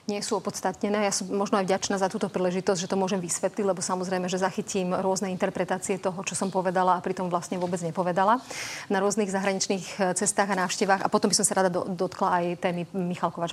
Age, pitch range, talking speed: 30-49, 185-205 Hz, 210 wpm